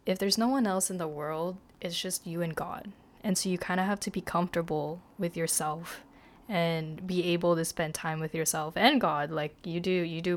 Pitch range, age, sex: 165-205 Hz, 20-39, female